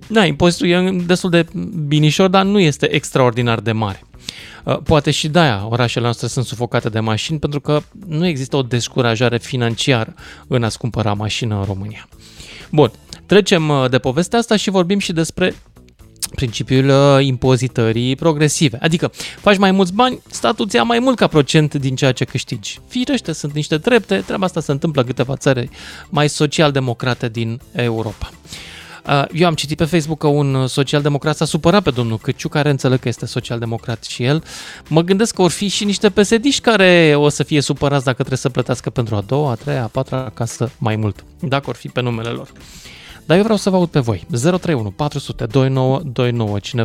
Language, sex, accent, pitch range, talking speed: Romanian, male, native, 120-165 Hz, 180 wpm